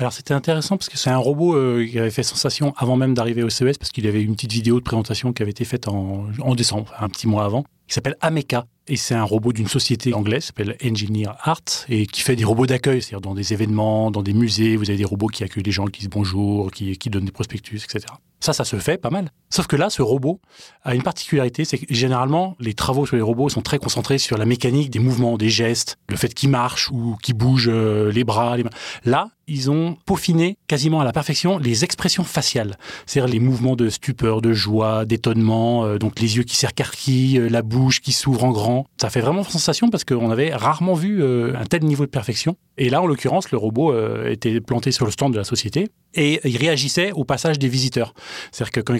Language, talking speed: French, 240 wpm